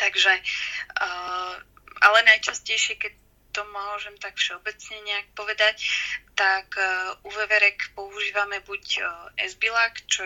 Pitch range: 180-205 Hz